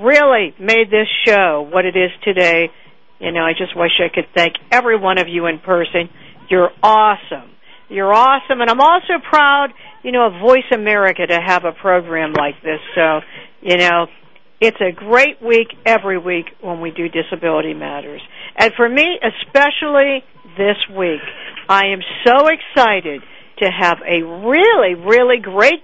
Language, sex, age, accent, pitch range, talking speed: English, female, 60-79, American, 180-240 Hz, 165 wpm